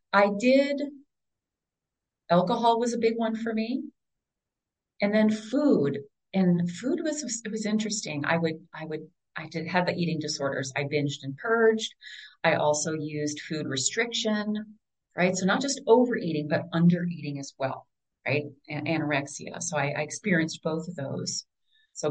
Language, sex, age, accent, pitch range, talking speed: English, female, 30-49, American, 155-215 Hz, 155 wpm